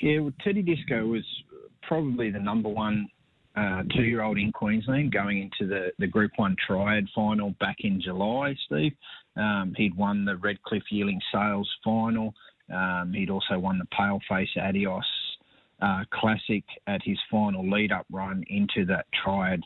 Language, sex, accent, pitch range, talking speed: English, male, Australian, 95-110 Hz, 155 wpm